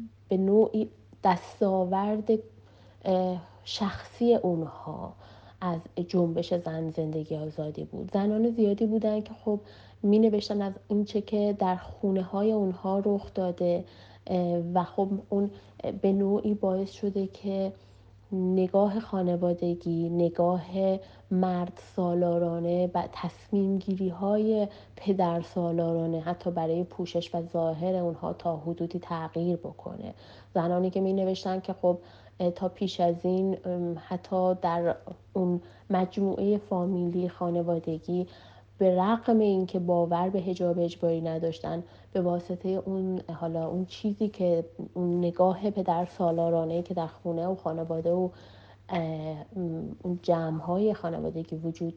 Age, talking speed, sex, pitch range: 30-49, 115 wpm, female, 170-195 Hz